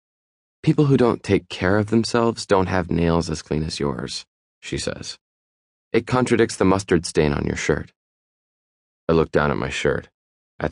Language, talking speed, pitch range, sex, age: English, 175 wpm, 75-100 Hz, male, 30-49